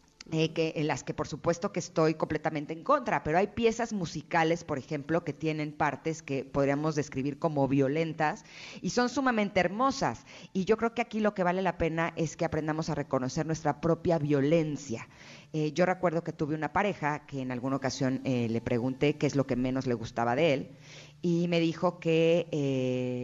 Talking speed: 195 wpm